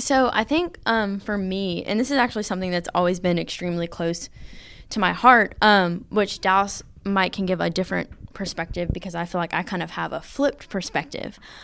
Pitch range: 180-220 Hz